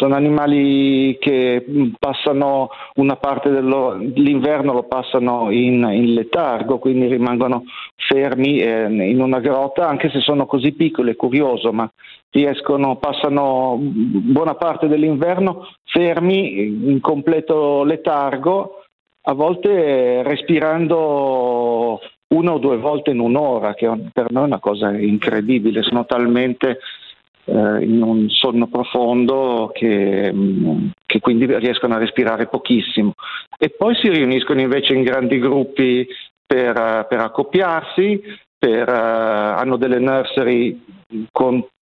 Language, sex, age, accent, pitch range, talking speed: Italian, male, 50-69, native, 115-150 Hz, 115 wpm